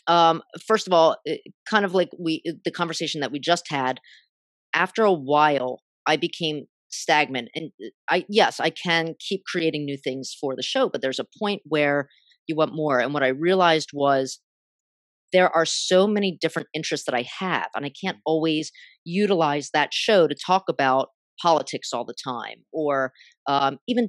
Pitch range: 145-185 Hz